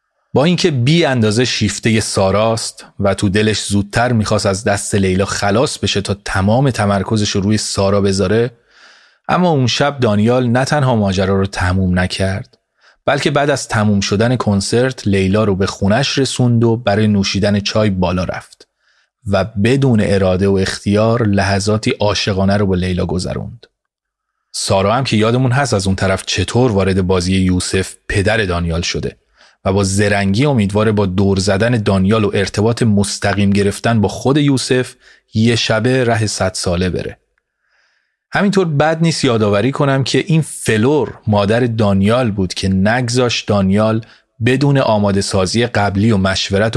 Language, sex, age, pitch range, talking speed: Persian, male, 30-49, 95-120 Hz, 150 wpm